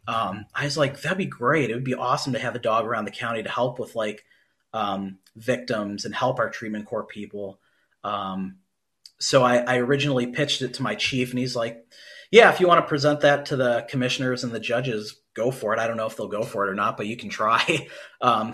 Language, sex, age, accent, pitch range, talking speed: English, male, 30-49, American, 110-135 Hz, 240 wpm